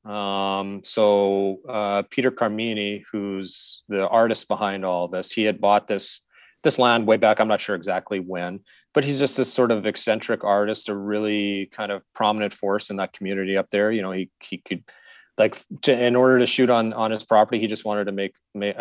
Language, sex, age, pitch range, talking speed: English, male, 30-49, 100-115 Hz, 205 wpm